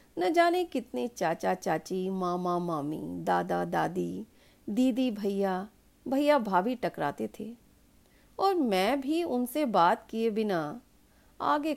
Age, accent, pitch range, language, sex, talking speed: 40-59, Indian, 185-270 Hz, English, female, 115 wpm